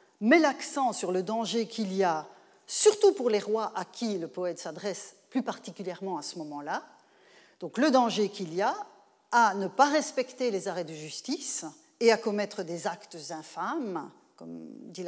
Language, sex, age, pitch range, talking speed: French, female, 40-59, 180-260 Hz, 175 wpm